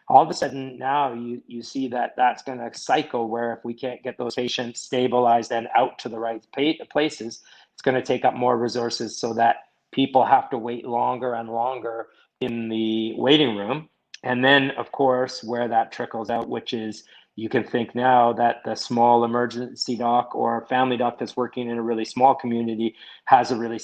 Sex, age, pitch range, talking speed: male, 30-49, 115-125 Hz, 195 wpm